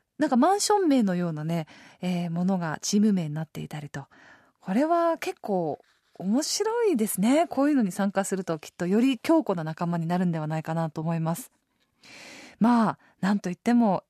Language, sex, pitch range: Japanese, female, 195-305 Hz